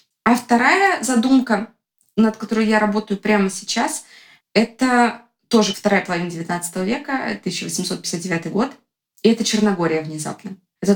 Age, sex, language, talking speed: 20-39, female, Russian, 120 wpm